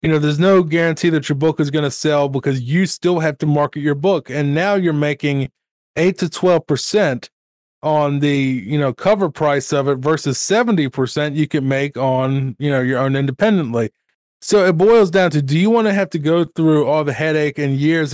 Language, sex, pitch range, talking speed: English, male, 140-170 Hz, 210 wpm